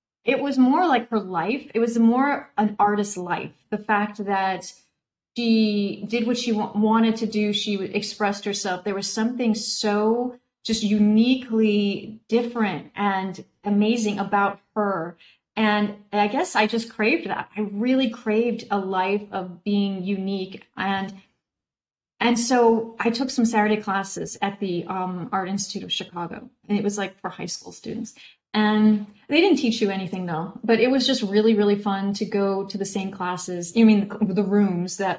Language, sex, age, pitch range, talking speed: English, female, 30-49, 195-225 Hz, 170 wpm